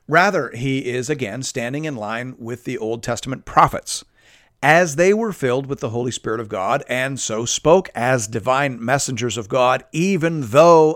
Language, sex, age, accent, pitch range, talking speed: English, male, 50-69, American, 110-140 Hz, 175 wpm